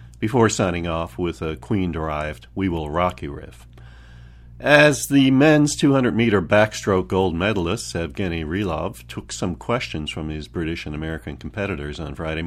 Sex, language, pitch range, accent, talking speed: male, English, 75-110 Hz, American, 145 wpm